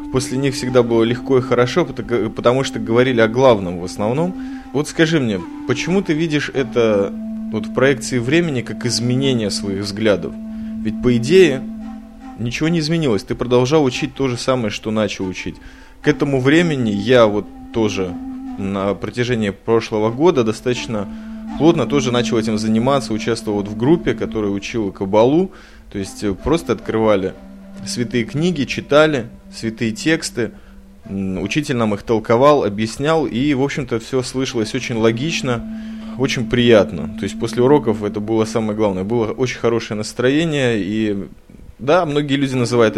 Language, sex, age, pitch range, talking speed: Russian, male, 20-39, 110-145 Hz, 145 wpm